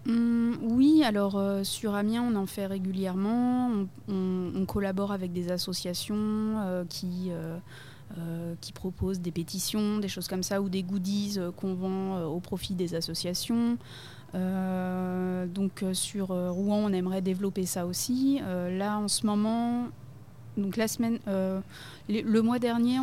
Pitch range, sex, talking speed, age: 180-205 Hz, female, 165 wpm, 20-39